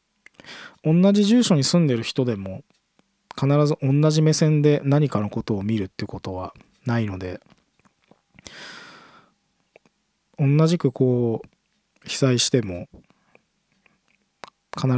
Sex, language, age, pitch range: male, Japanese, 20-39, 110-145 Hz